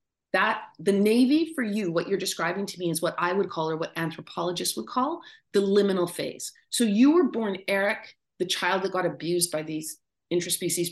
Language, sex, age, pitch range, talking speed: English, female, 30-49, 160-195 Hz, 200 wpm